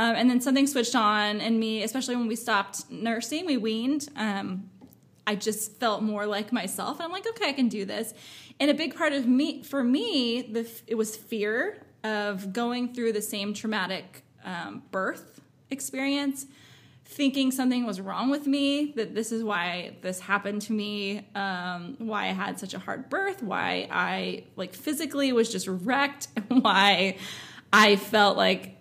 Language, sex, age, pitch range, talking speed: English, female, 20-39, 200-255 Hz, 175 wpm